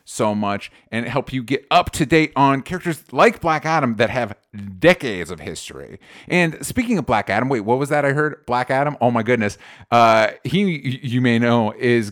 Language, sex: English, male